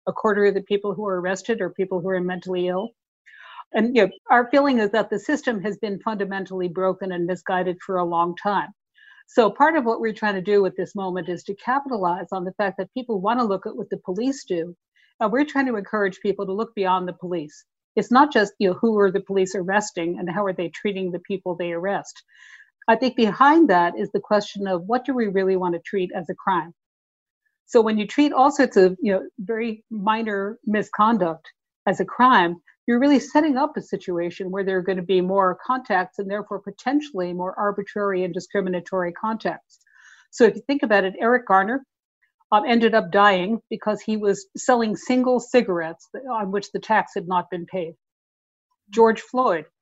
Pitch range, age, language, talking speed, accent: 185-230 Hz, 50-69, English, 205 wpm, American